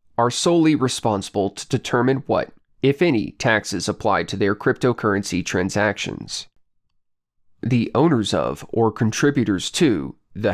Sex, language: male, English